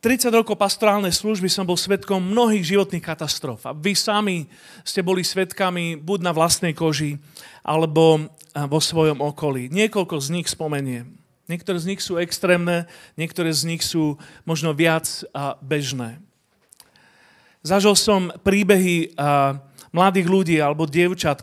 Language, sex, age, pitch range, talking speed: Slovak, male, 40-59, 145-190 Hz, 130 wpm